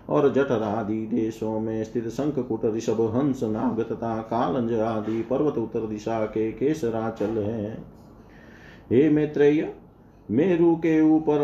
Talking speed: 105 wpm